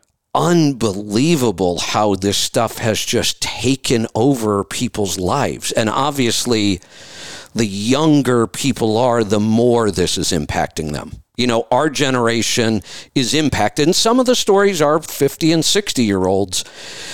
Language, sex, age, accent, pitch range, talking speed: English, male, 50-69, American, 105-140 Hz, 130 wpm